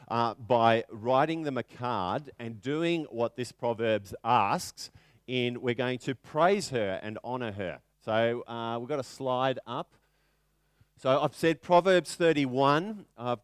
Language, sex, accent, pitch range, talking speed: English, male, Australian, 120-155 Hz, 155 wpm